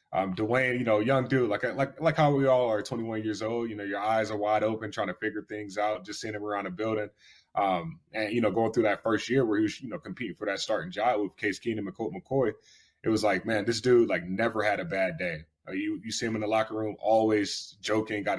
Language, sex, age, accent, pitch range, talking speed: English, male, 20-39, American, 105-115 Hz, 265 wpm